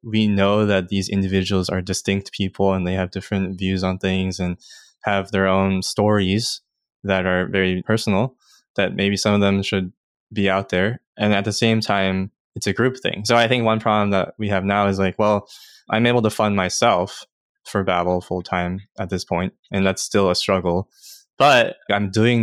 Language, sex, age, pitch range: English, male, 20-39, 95-110 Hz